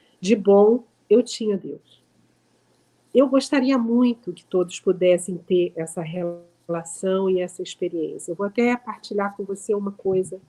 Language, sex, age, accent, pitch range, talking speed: Portuguese, female, 50-69, Brazilian, 195-235 Hz, 145 wpm